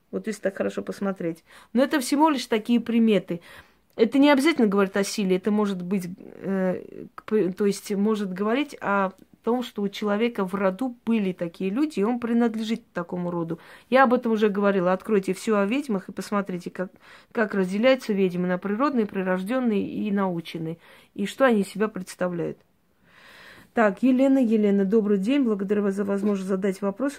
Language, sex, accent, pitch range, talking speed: Russian, female, native, 190-230 Hz, 170 wpm